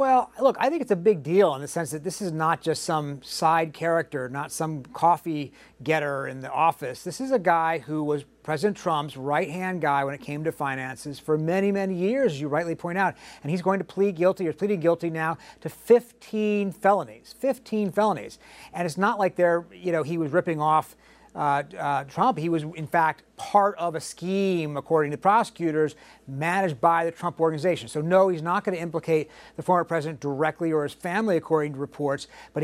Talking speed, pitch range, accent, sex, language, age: 210 wpm, 155-195 Hz, American, male, English, 40-59